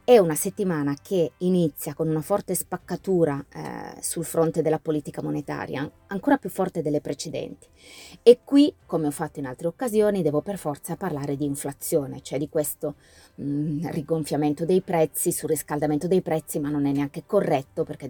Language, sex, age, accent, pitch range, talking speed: Italian, female, 20-39, native, 145-185 Hz, 165 wpm